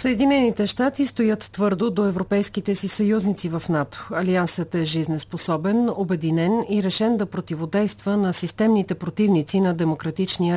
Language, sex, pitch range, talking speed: Bulgarian, female, 165-205 Hz, 130 wpm